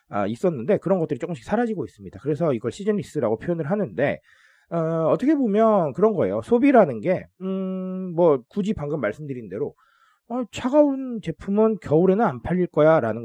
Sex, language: male, Korean